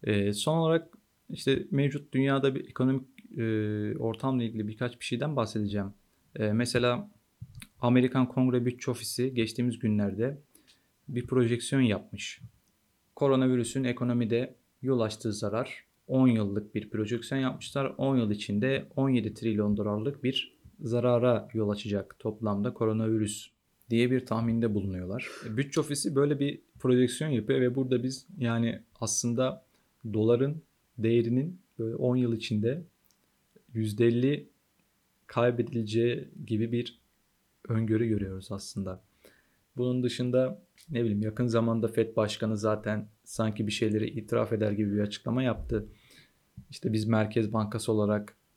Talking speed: 120 wpm